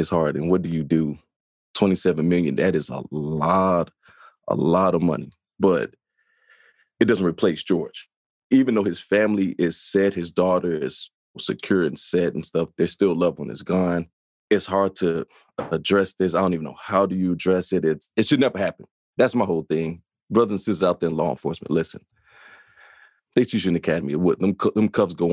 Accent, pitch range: American, 85-105 Hz